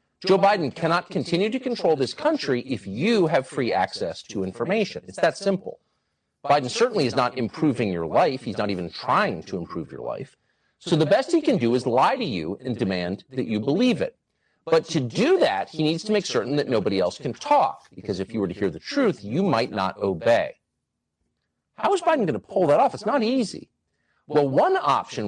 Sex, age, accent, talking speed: male, 40-59, American, 210 wpm